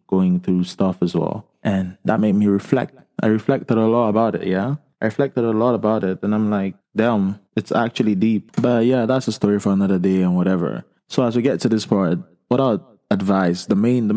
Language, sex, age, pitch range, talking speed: English, male, 20-39, 95-125 Hz, 220 wpm